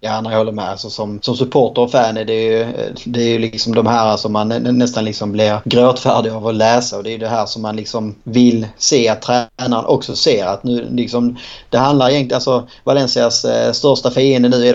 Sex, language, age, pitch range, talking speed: male, Swedish, 30-49, 110-125 Hz, 210 wpm